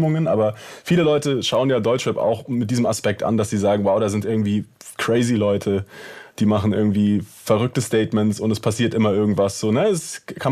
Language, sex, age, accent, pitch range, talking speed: German, male, 30-49, German, 115-145 Hz, 185 wpm